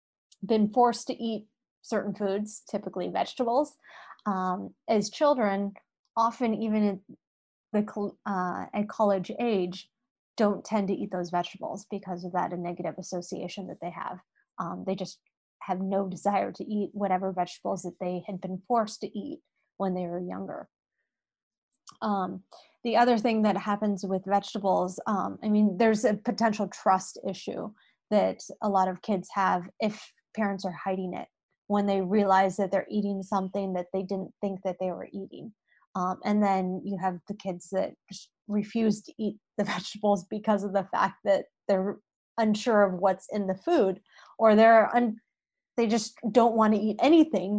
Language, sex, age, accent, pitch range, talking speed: English, female, 20-39, American, 190-220 Hz, 165 wpm